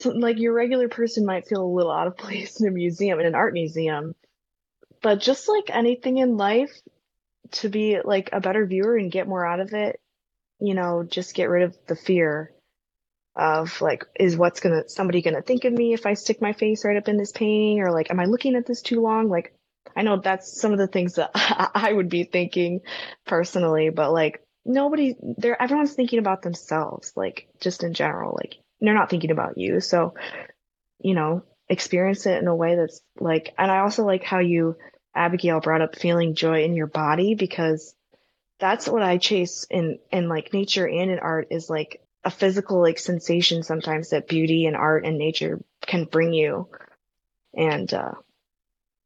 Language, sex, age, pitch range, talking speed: English, female, 20-39, 165-210 Hz, 195 wpm